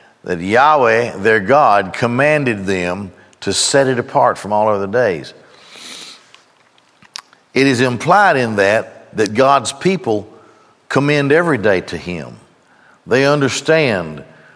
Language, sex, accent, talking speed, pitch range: English, male, American, 120 wpm, 105-135 Hz